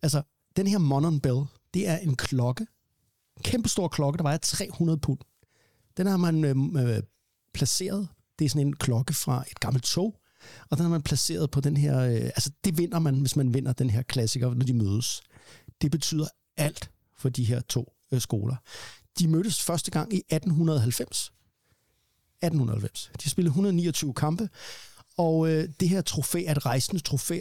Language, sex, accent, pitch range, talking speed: Danish, male, native, 120-160 Hz, 175 wpm